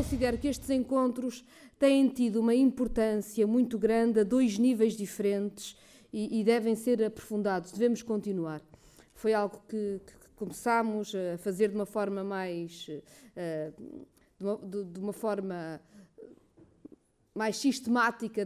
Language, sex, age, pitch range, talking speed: Portuguese, female, 20-39, 205-250 Hz, 135 wpm